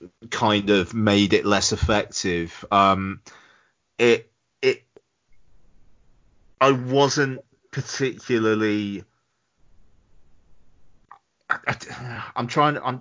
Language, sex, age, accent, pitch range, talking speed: English, male, 30-49, British, 100-120 Hz, 80 wpm